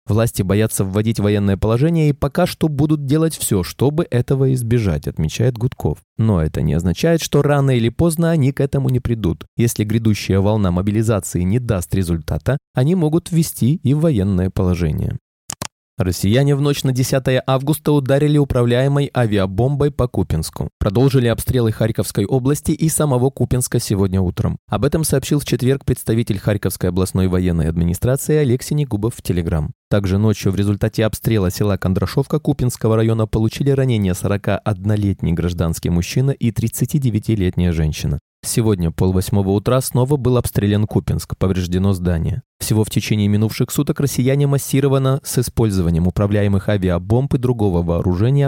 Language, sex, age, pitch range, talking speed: Russian, male, 20-39, 100-135 Hz, 145 wpm